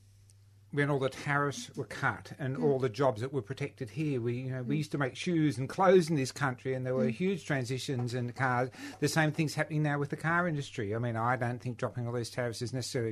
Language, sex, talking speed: English, male, 250 wpm